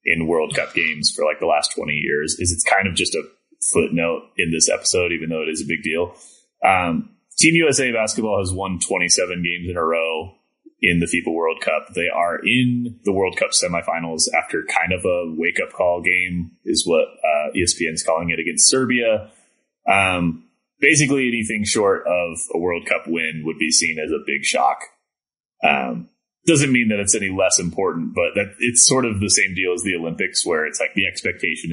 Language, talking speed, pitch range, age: English, 200 wpm, 85-120 Hz, 20-39